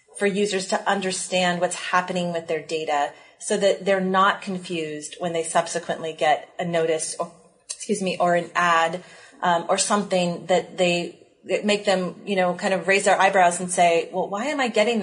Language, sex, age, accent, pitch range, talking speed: English, female, 30-49, American, 170-190 Hz, 190 wpm